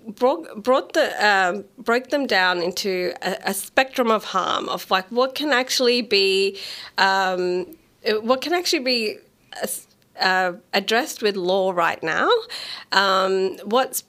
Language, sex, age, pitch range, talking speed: English, female, 30-49, 185-240 Hz, 135 wpm